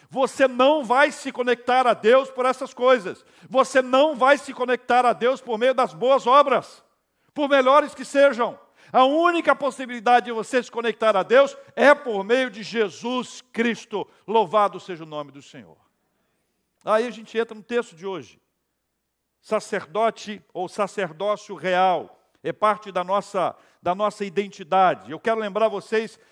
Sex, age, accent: male, 60-79, Brazilian